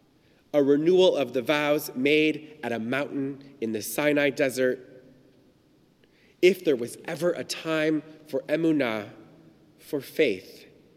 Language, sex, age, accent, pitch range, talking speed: English, male, 30-49, American, 140-175 Hz, 125 wpm